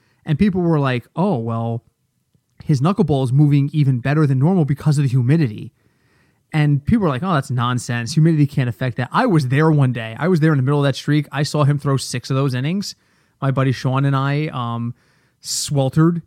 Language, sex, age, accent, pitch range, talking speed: English, male, 30-49, American, 130-185 Hz, 215 wpm